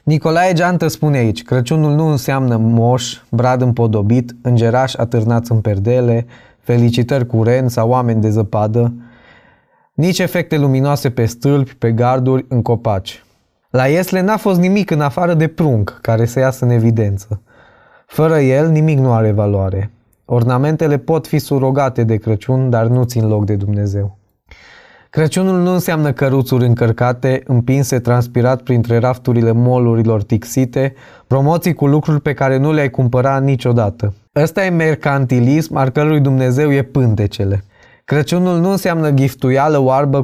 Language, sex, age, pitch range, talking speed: Romanian, male, 20-39, 120-145 Hz, 140 wpm